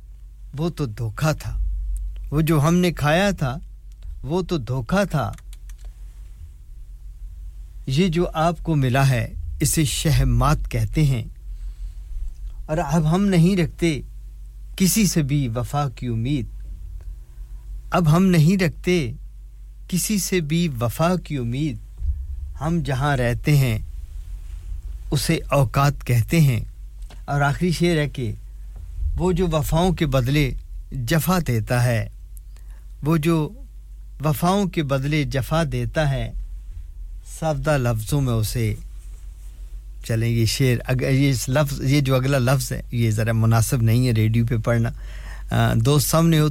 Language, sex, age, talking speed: English, male, 50-69, 125 wpm